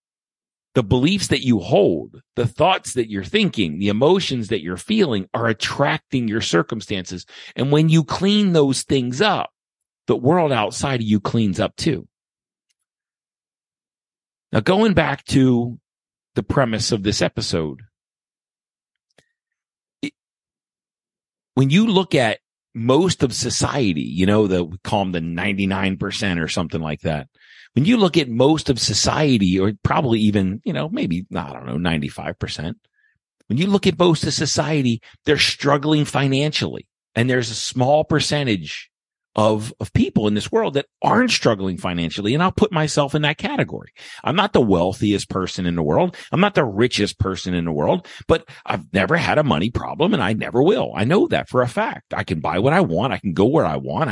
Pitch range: 95-150 Hz